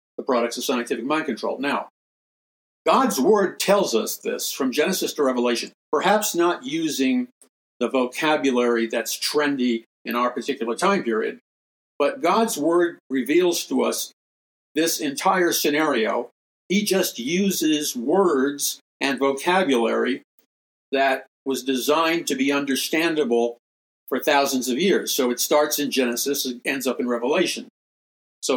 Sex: male